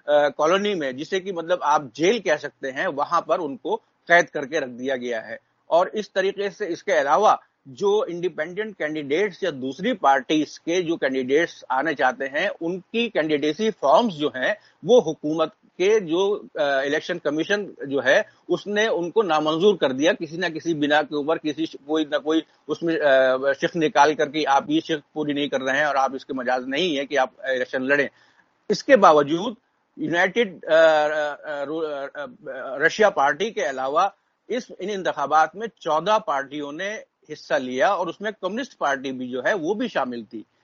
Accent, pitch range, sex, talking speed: Indian, 145-205 Hz, male, 160 wpm